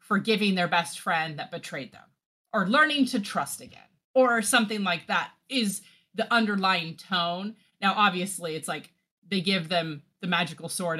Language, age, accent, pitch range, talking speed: English, 30-49, American, 170-205 Hz, 165 wpm